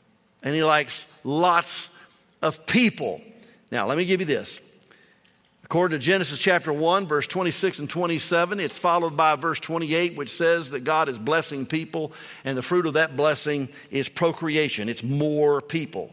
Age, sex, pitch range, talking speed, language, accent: 50-69, male, 145-180 Hz, 165 wpm, English, American